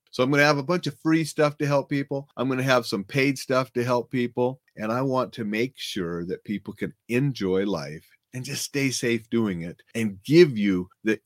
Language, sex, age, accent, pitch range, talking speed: English, male, 40-59, American, 105-145 Hz, 235 wpm